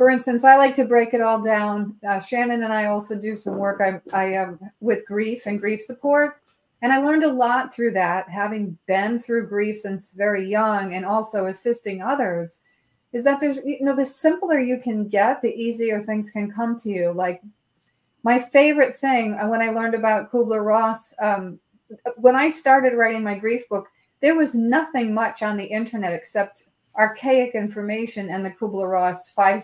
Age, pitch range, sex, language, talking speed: 30-49, 205-255 Hz, female, English, 185 wpm